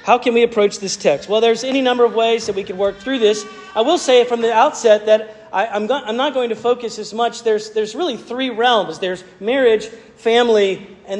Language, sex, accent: English, male, American